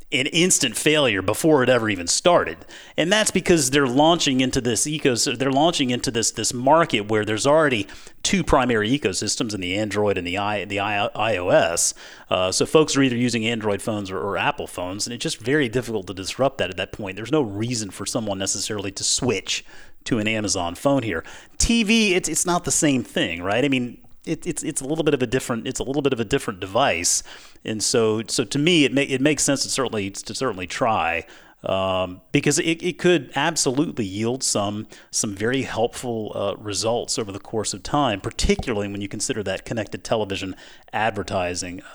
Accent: American